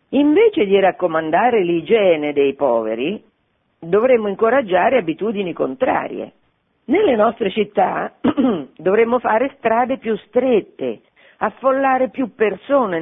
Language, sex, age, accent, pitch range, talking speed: Italian, female, 50-69, native, 165-250 Hz, 95 wpm